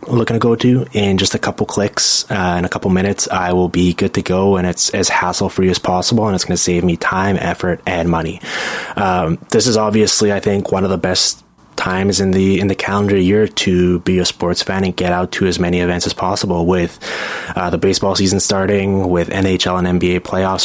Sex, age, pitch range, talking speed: male, 20-39, 90-100 Hz, 225 wpm